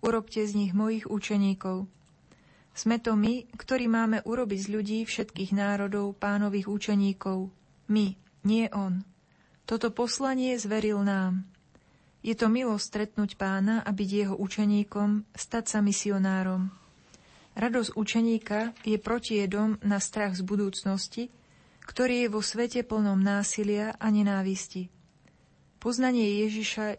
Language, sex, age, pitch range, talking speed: Slovak, female, 30-49, 195-220 Hz, 120 wpm